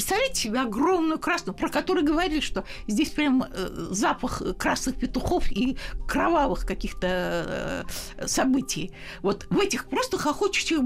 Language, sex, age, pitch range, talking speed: Russian, female, 60-79, 240-320 Hz, 120 wpm